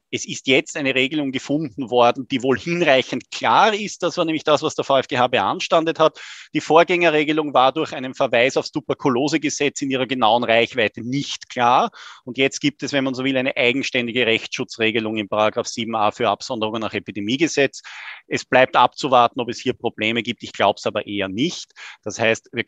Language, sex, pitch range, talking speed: English, male, 110-140 Hz, 185 wpm